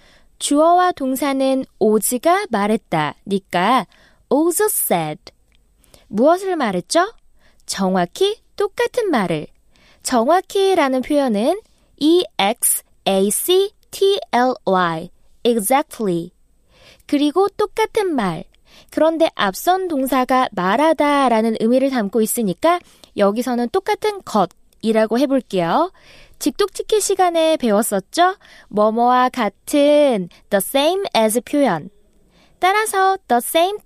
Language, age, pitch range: Korean, 20-39, 215-355 Hz